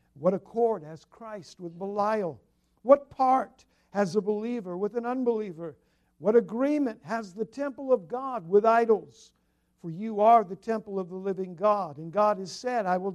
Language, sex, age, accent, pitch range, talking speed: English, male, 60-79, American, 190-250 Hz, 175 wpm